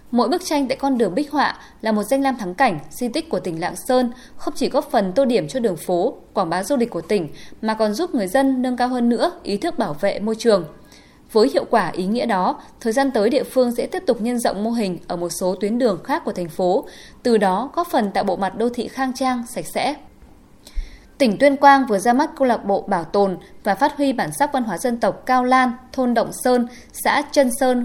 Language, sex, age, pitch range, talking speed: Vietnamese, female, 20-39, 210-265 Hz, 255 wpm